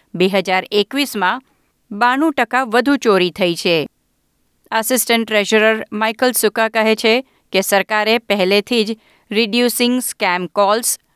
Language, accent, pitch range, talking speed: Gujarati, native, 190-245 Hz, 100 wpm